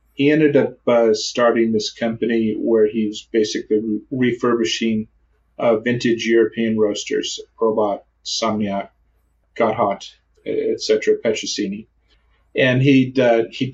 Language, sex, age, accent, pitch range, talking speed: English, male, 50-69, American, 110-125 Hz, 120 wpm